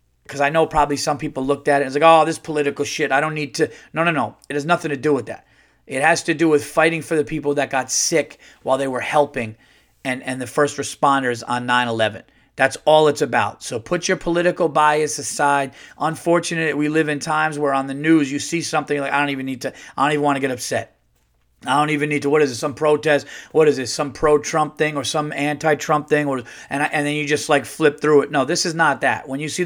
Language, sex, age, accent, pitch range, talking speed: English, male, 30-49, American, 125-150 Hz, 260 wpm